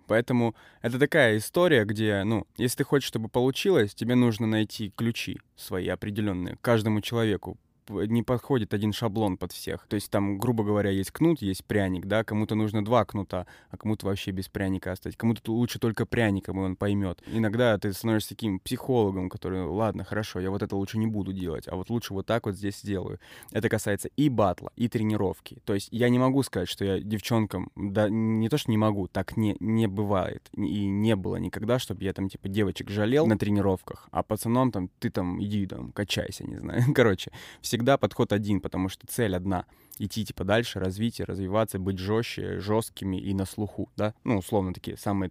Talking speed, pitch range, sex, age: 195 wpm, 95-115 Hz, male, 20-39